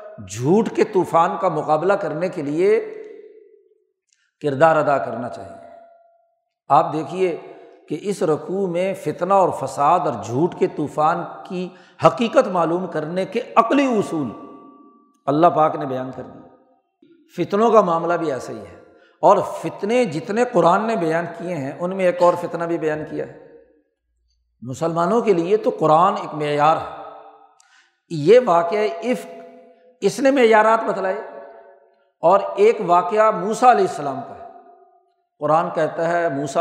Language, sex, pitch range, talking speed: Urdu, male, 150-210 Hz, 150 wpm